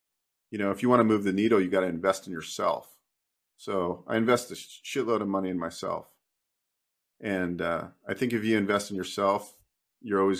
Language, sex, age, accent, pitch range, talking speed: English, male, 40-59, American, 90-115 Hz, 200 wpm